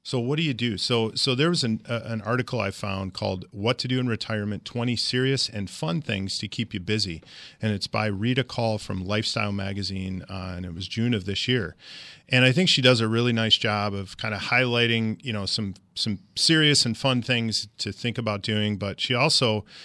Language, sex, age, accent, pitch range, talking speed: English, male, 40-59, American, 105-130 Hz, 225 wpm